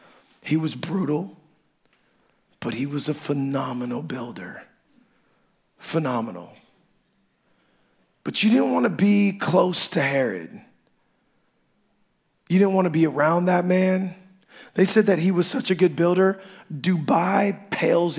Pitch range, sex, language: 150-195 Hz, male, English